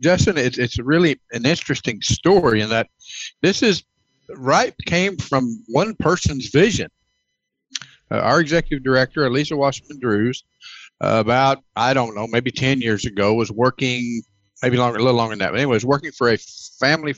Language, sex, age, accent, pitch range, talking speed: English, male, 50-69, American, 115-145 Hz, 170 wpm